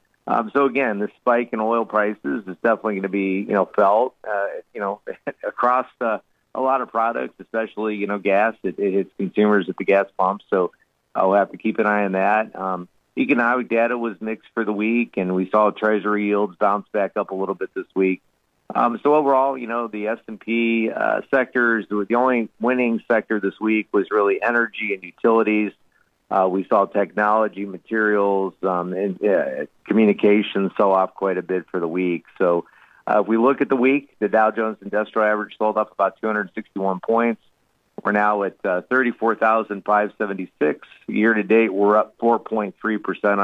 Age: 40-59